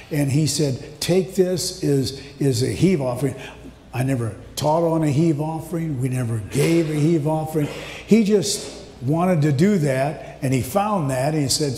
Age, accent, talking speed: 50-69, American, 180 wpm